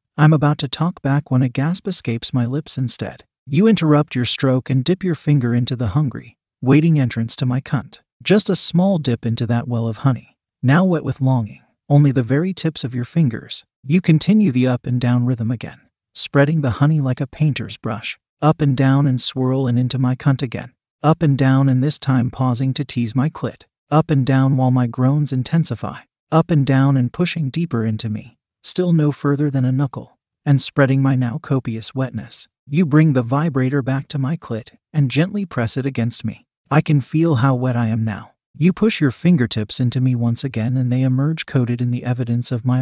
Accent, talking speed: American, 210 wpm